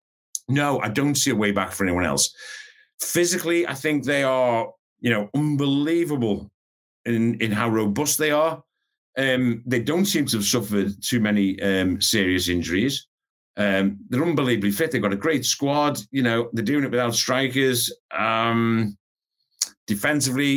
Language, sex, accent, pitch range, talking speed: English, male, British, 100-140 Hz, 160 wpm